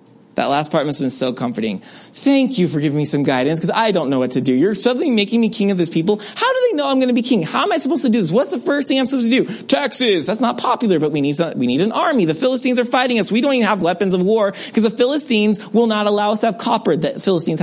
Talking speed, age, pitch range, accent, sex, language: 305 wpm, 30-49, 155-230 Hz, American, male, English